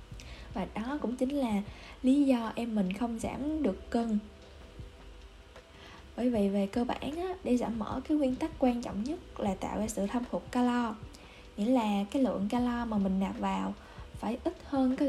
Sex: female